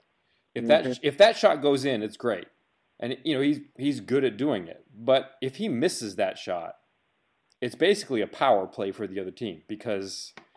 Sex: male